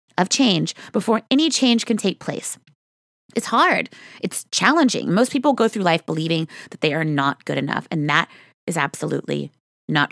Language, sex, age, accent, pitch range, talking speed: English, female, 30-49, American, 180-260 Hz, 170 wpm